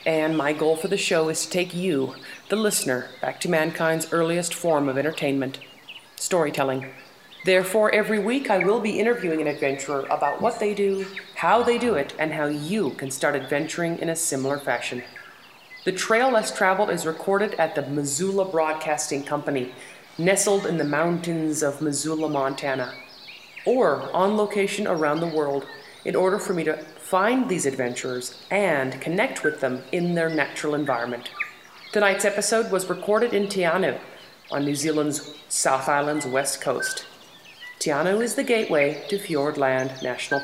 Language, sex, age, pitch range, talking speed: English, female, 30-49, 145-205 Hz, 160 wpm